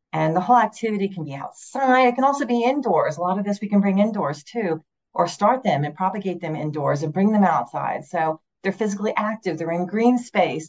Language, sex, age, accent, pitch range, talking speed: English, female, 40-59, American, 160-200 Hz, 225 wpm